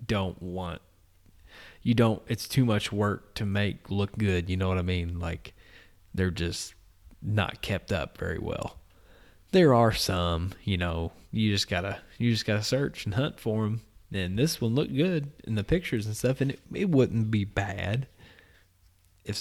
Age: 20-39